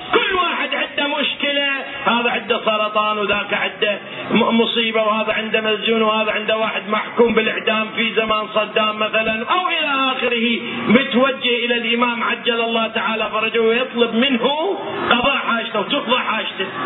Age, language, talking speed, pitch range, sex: 40-59, Arabic, 135 wpm, 220-280 Hz, male